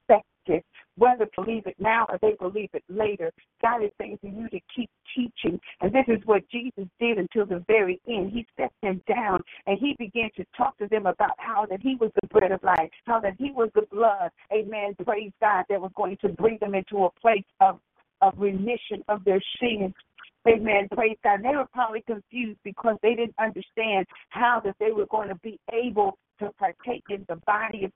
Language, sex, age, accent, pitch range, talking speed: English, female, 50-69, American, 205-245 Hz, 215 wpm